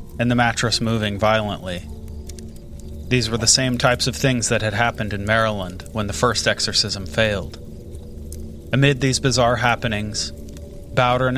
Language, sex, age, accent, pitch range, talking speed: English, male, 30-49, American, 80-120 Hz, 140 wpm